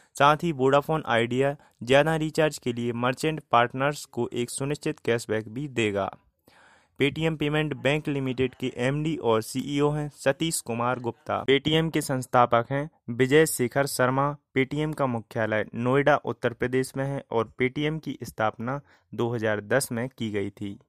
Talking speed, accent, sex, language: 150 wpm, native, male, Hindi